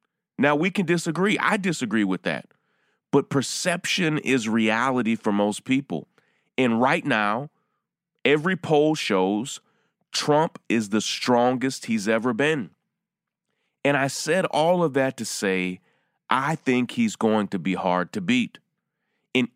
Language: English